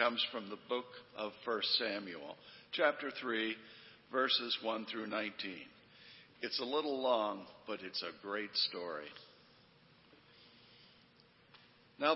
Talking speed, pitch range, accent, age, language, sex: 115 wpm, 110-150 Hz, American, 60-79, English, male